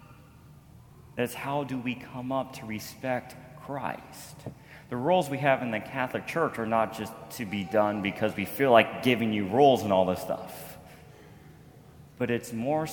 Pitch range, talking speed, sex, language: 105-140 Hz, 170 wpm, male, English